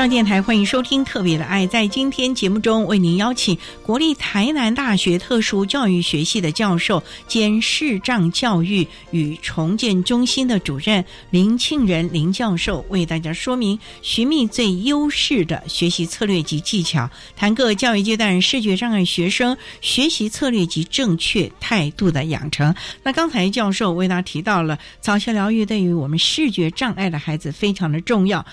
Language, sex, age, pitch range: Chinese, female, 60-79, 170-235 Hz